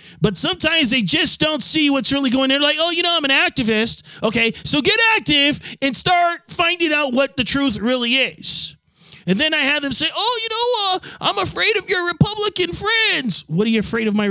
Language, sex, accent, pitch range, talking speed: English, male, American, 205-320 Hz, 220 wpm